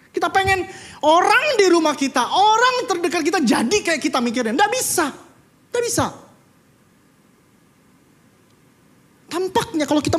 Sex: male